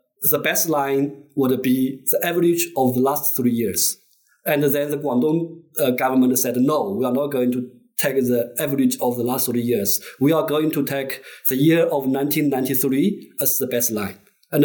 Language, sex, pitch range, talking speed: English, male, 125-150 Hz, 200 wpm